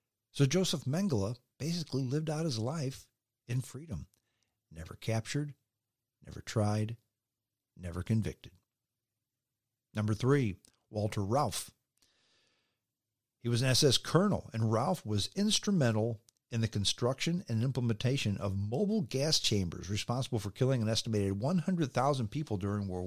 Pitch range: 110-135 Hz